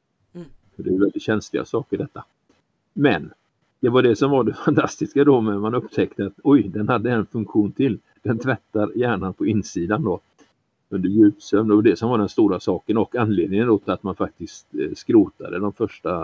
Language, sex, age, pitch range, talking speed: Swedish, male, 50-69, 100-150 Hz, 185 wpm